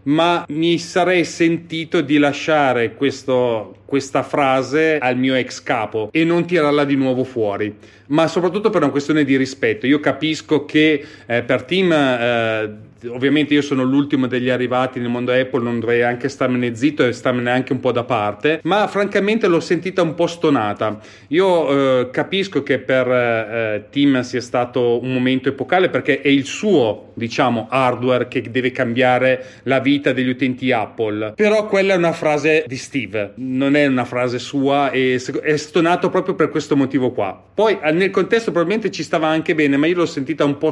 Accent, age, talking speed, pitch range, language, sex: native, 30-49, 180 wpm, 125-160 Hz, Italian, male